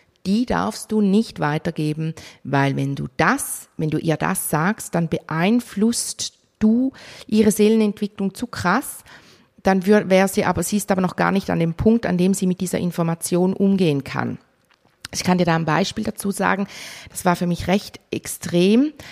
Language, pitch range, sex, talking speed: German, 170-205 Hz, female, 175 wpm